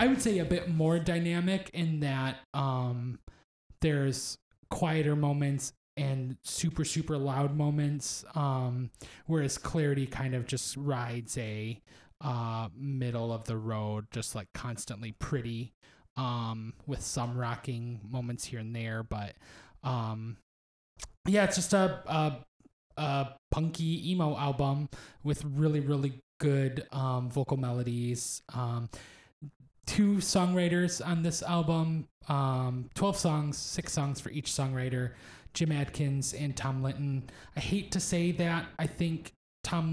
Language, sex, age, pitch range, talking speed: English, male, 20-39, 120-160 Hz, 130 wpm